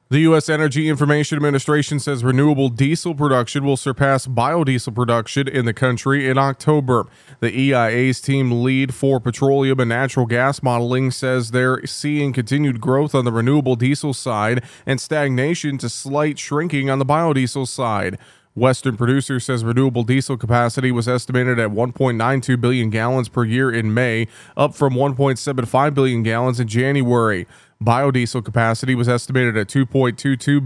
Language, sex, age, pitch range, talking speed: English, male, 20-39, 120-135 Hz, 150 wpm